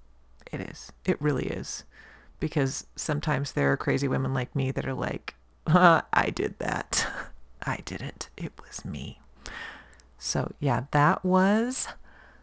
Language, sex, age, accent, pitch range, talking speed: English, female, 40-59, American, 135-165 Hz, 140 wpm